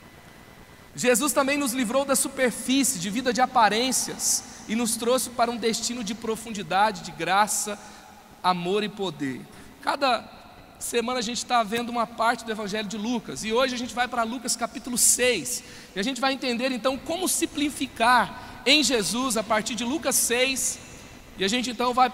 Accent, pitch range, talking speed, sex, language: Brazilian, 225-255 Hz, 175 wpm, male, Portuguese